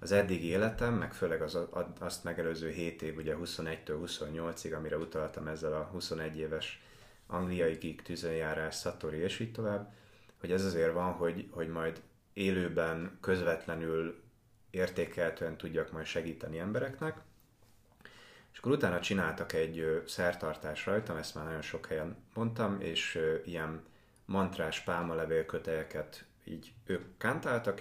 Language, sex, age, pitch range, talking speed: Hungarian, male, 30-49, 80-105 Hz, 130 wpm